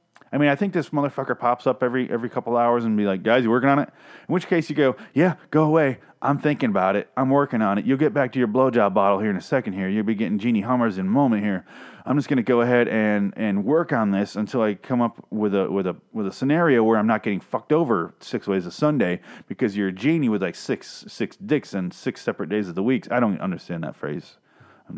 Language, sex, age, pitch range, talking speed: English, male, 30-49, 105-140 Hz, 270 wpm